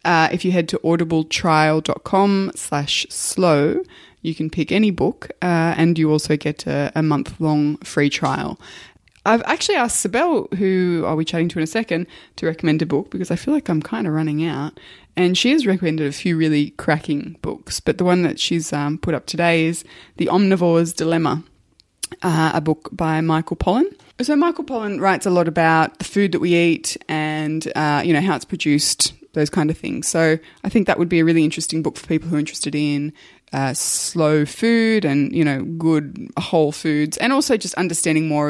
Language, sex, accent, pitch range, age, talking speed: English, female, Australian, 155-195 Hz, 20-39, 205 wpm